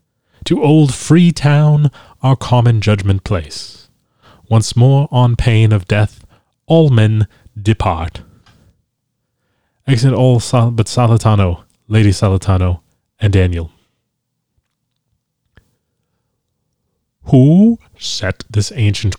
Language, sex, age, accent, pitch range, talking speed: English, male, 30-49, American, 100-125 Hz, 90 wpm